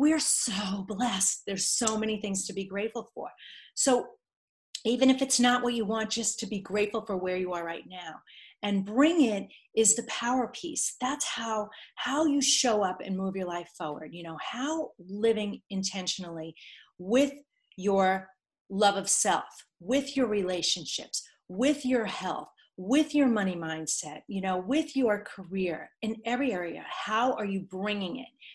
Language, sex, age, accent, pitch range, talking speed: English, female, 40-59, American, 185-245 Hz, 170 wpm